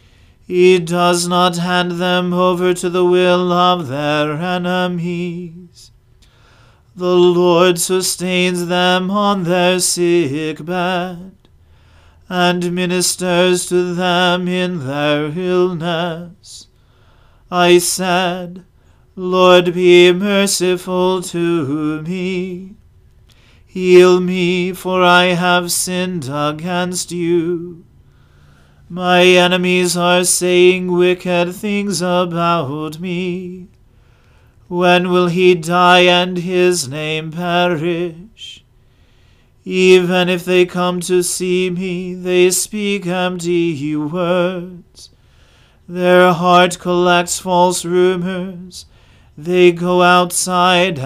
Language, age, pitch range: English, 40-59, 170-180 Hz